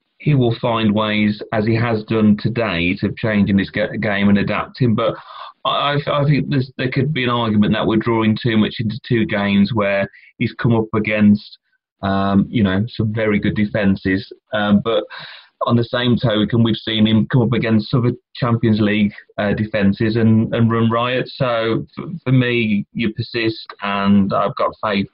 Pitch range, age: 100-115 Hz, 30-49